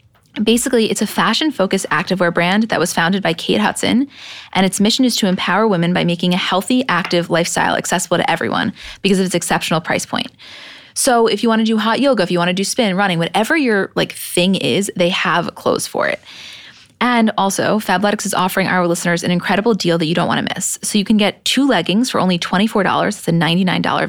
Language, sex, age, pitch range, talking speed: English, female, 20-39, 175-210 Hz, 215 wpm